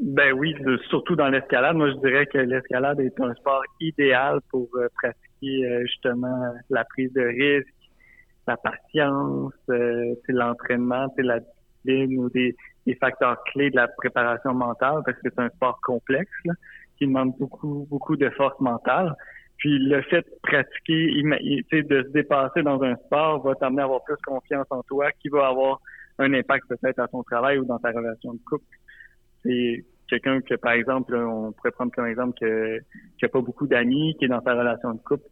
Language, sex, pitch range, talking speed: French, male, 120-140 Hz, 185 wpm